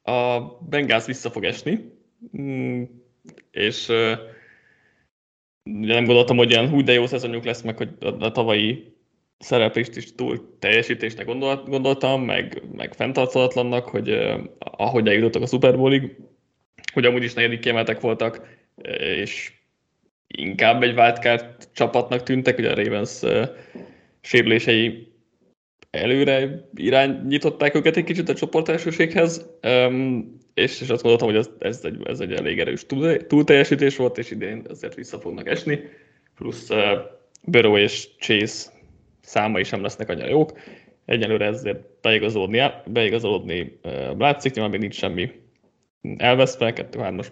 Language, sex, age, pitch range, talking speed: Hungarian, male, 20-39, 115-135 Hz, 120 wpm